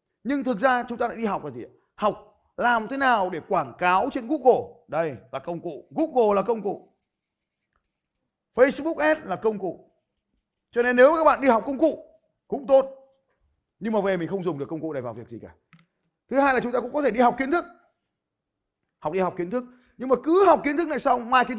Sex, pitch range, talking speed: male, 170-250 Hz, 235 wpm